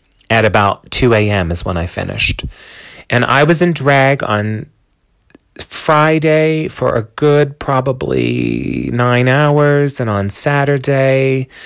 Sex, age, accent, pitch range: male, 30-49, American, 95-135 Hz